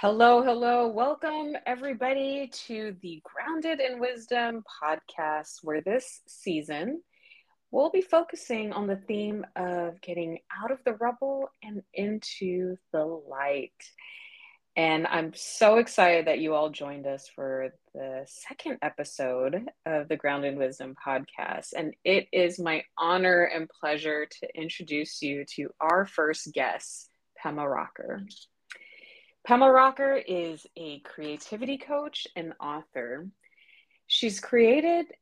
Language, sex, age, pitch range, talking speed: English, female, 30-49, 155-245 Hz, 125 wpm